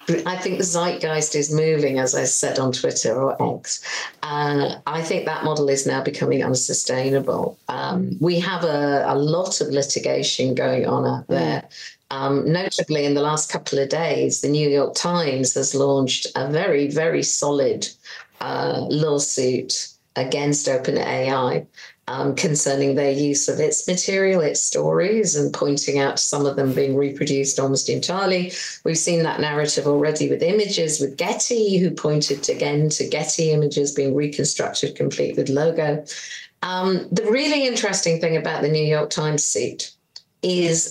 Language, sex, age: English, female, 40-59